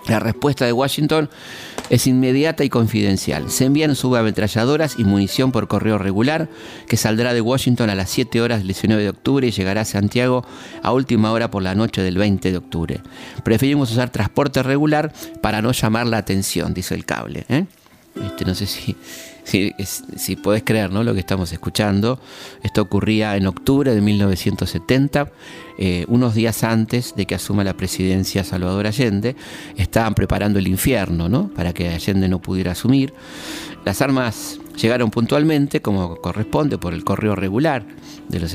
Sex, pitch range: male, 95-120 Hz